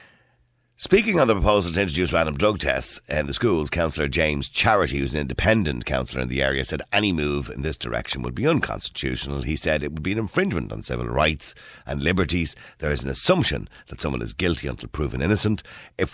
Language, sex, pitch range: English, male, 70-105 Hz